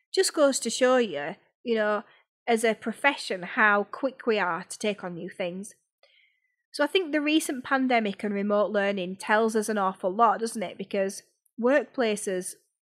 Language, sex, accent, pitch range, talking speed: English, female, British, 200-255 Hz, 175 wpm